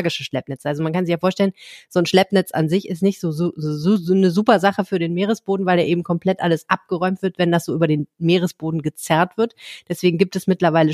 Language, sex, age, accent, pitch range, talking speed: German, female, 30-49, German, 160-195 Hz, 235 wpm